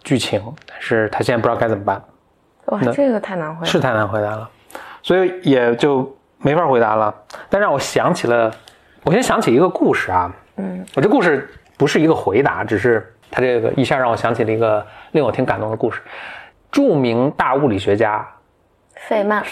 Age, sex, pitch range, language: 20-39, male, 105-135 Hz, Chinese